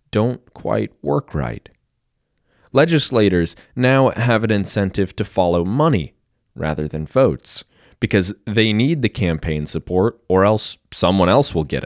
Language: English